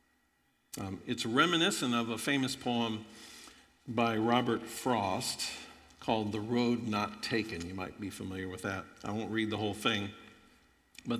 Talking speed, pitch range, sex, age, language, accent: 150 wpm, 110-130 Hz, male, 50-69, English, American